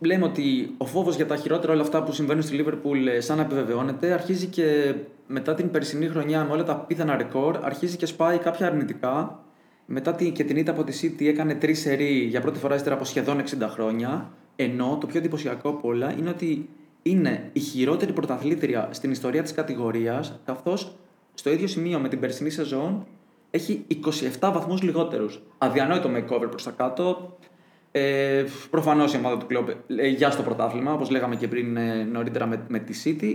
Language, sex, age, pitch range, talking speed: Greek, male, 20-39, 135-175 Hz, 185 wpm